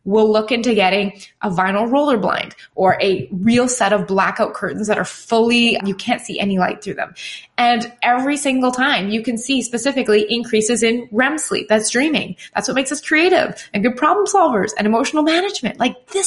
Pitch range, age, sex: 215-285 Hz, 20-39, female